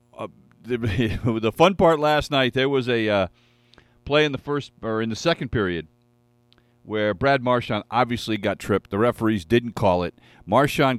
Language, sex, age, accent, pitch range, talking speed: English, male, 50-69, American, 100-130 Hz, 165 wpm